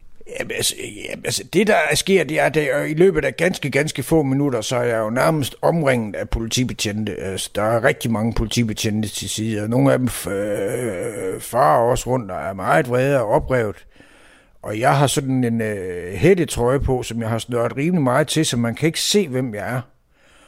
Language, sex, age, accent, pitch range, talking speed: Danish, male, 60-79, native, 115-145 Hz, 205 wpm